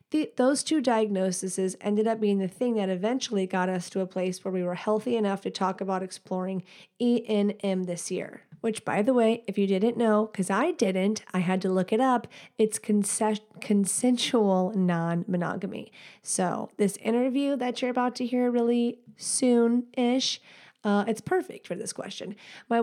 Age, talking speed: 30-49, 175 wpm